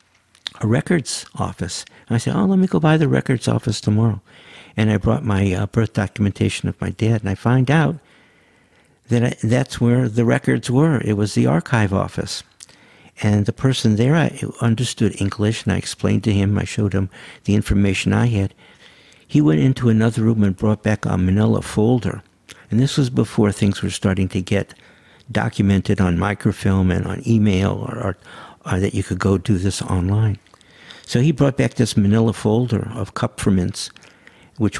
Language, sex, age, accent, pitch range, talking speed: English, male, 60-79, American, 100-115 Hz, 185 wpm